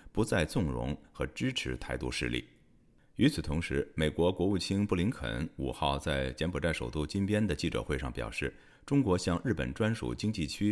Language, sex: Chinese, male